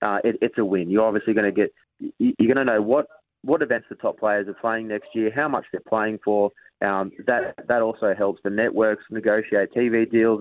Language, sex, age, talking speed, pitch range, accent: English, male, 20-39, 225 wpm, 100-115 Hz, Australian